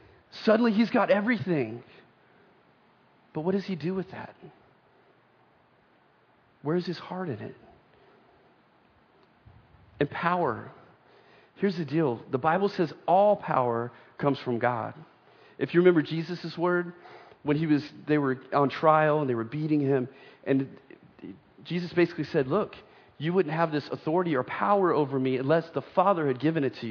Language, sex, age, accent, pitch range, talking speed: English, male, 40-59, American, 140-185 Hz, 150 wpm